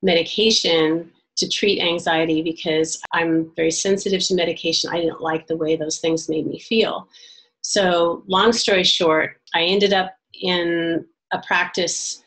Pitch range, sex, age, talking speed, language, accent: 165-190 Hz, female, 40-59, 145 wpm, English, American